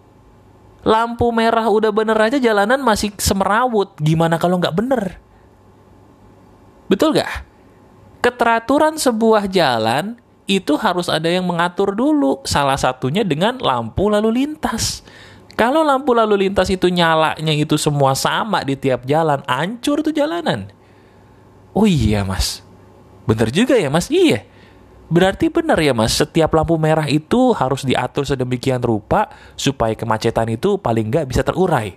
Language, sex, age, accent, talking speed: Indonesian, male, 30-49, native, 135 wpm